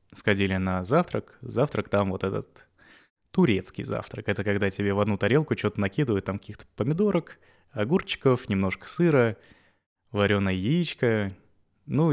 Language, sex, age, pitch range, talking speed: Russian, male, 20-39, 100-125 Hz, 130 wpm